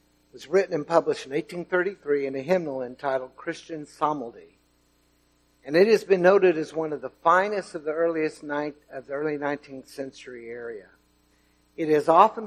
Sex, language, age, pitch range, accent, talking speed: male, English, 60-79, 120-170 Hz, American, 170 wpm